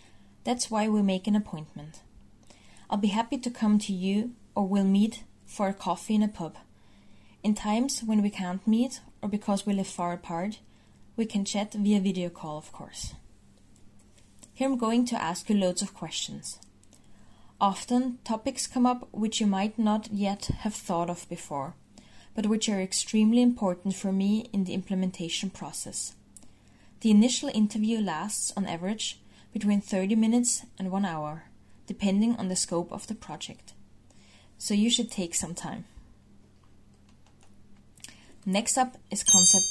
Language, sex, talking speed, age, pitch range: English, female, 155 wpm, 20-39, 165-215 Hz